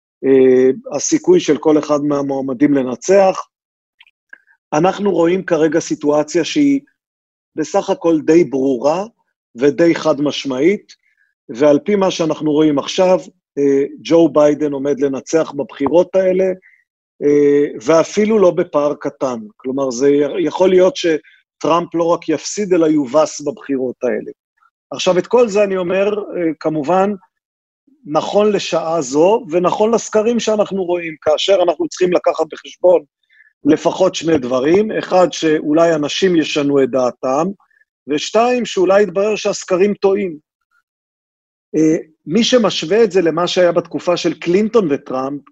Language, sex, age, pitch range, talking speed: Hebrew, male, 40-59, 150-190 Hz, 125 wpm